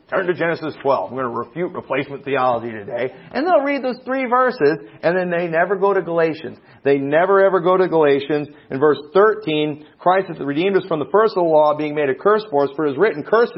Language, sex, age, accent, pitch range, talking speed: English, male, 40-59, American, 150-220 Hz, 240 wpm